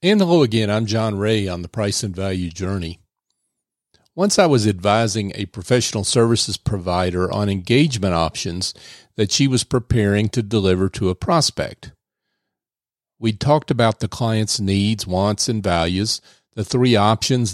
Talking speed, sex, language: 150 wpm, male, English